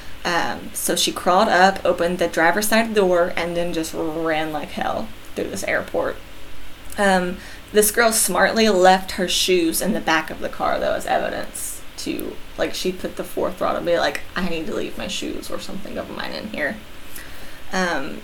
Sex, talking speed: female, 190 wpm